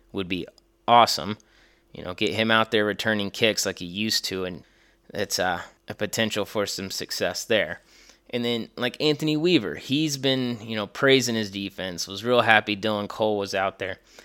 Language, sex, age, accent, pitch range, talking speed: English, male, 20-39, American, 100-125 Hz, 185 wpm